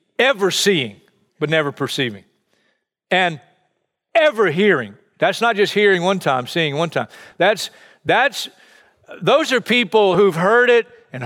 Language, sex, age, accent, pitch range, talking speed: English, male, 50-69, American, 160-220 Hz, 140 wpm